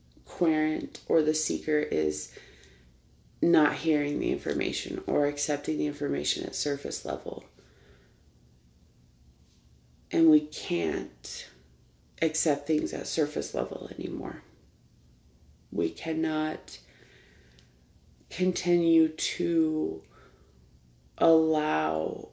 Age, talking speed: 30-49, 80 wpm